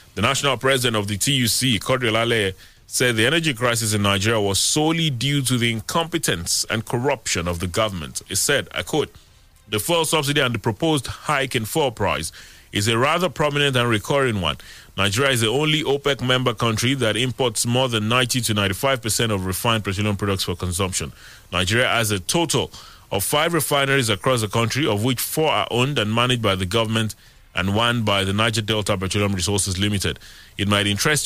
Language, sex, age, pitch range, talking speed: English, male, 30-49, 100-130 Hz, 190 wpm